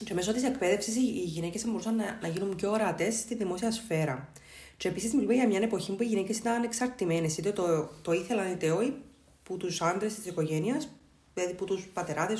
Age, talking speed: 20-39, 195 wpm